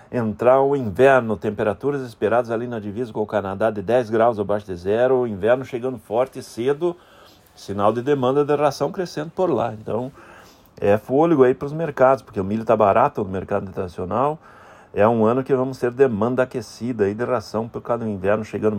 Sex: male